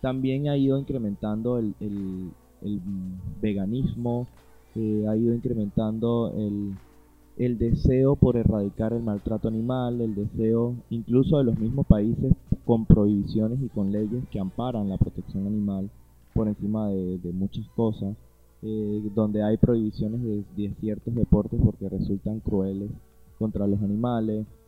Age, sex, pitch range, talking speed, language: 20-39, male, 105-125 Hz, 140 wpm, Spanish